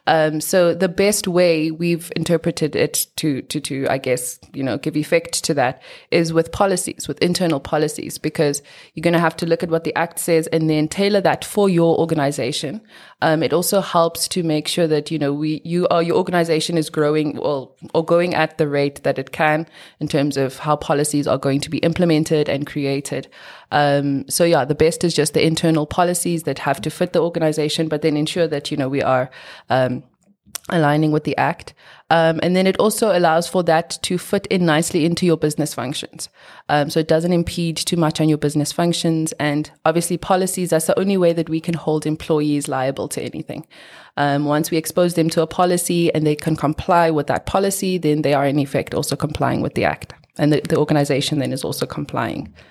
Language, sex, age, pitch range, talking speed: English, female, 20-39, 150-170 Hz, 215 wpm